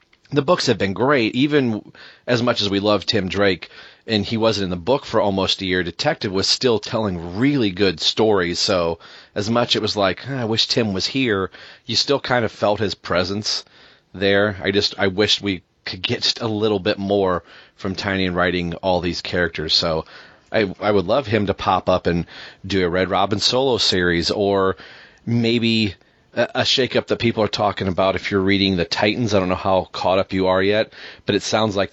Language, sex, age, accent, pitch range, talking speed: English, male, 30-49, American, 95-110 Hz, 210 wpm